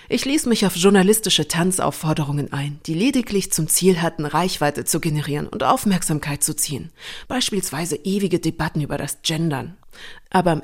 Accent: German